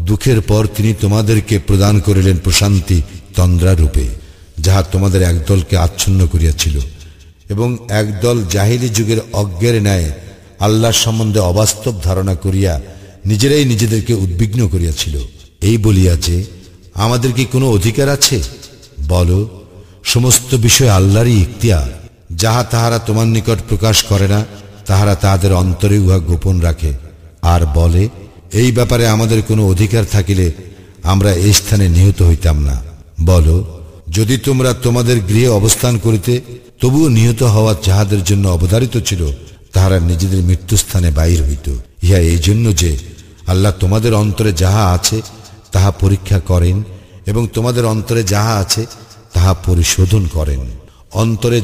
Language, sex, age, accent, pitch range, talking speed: Bengali, male, 50-69, native, 90-110 Hz, 90 wpm